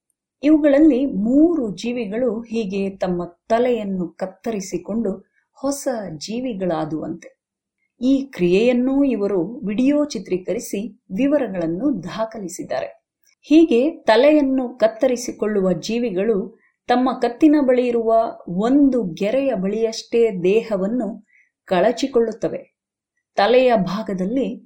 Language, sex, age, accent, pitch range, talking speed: Kannada, female, 30-49, native, 195-265 Hz, 75 wpm